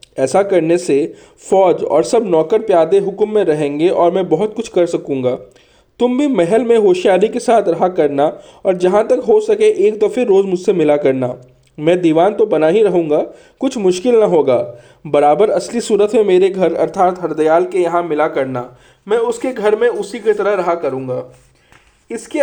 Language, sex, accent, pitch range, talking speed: Hindi, male, native, 165-245 Hz, 185 wpm